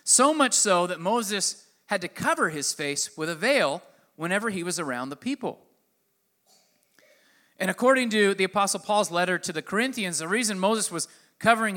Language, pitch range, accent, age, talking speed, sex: English, 140-200 Hz, American, 30-49, 175 wpm, male